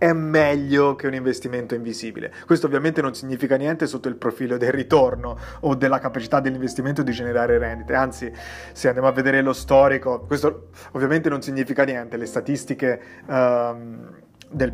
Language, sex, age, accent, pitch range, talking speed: Italian, male, 30-49, native, 120-140 Hz, 155 wpm